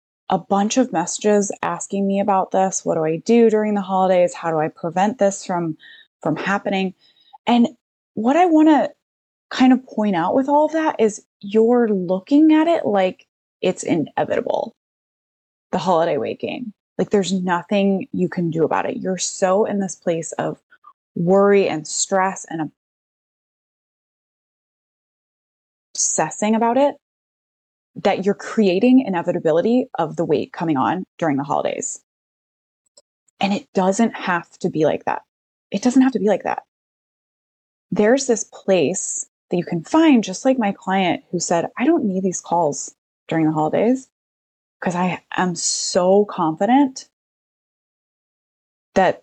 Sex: female